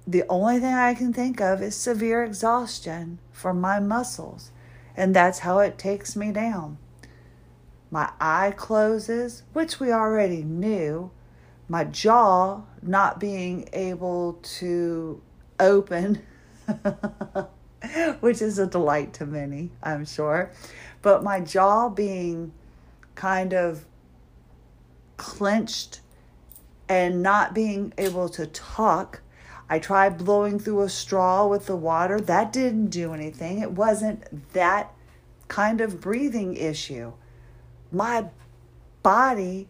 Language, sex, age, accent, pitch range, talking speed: English, female, 40-59, American, 145-205 Hz, 115 wpm